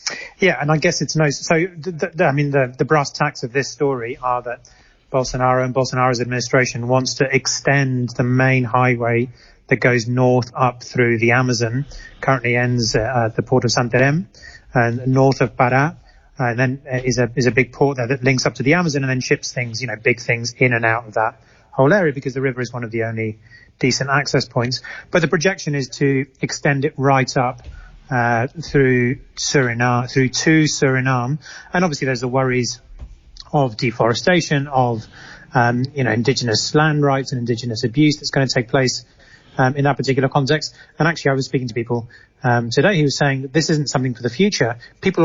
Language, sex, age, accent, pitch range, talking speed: English, male, 30-49, British, 125-145 Hz, 205 wpm